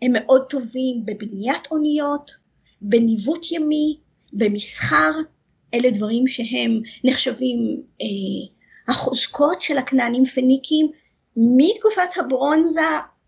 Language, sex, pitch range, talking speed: Hebrew, female, 235-295 Hz, 85 wpm